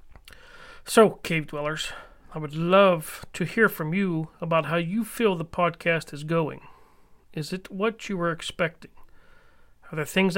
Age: 40-59